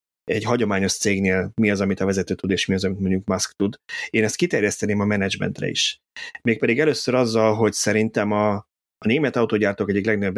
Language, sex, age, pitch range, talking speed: Hungarian, male, 30-49, 100-125 Hz, 190 wpm